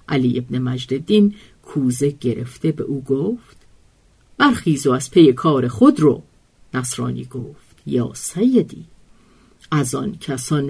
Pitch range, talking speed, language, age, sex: 140-230 Hz, 125 wpm, Persian, 50-69, female